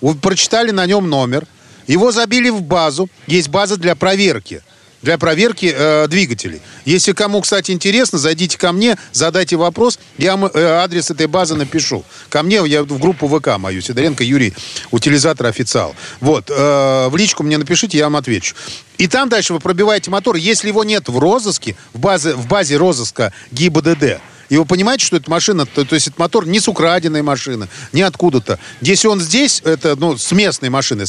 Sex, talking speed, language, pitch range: male, 180 wpm, Russian, 135-190 Hz